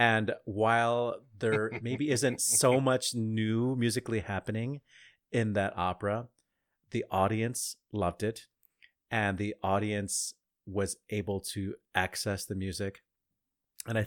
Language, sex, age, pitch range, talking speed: English, male, 30-49, 95-115 Hz, 120 wpm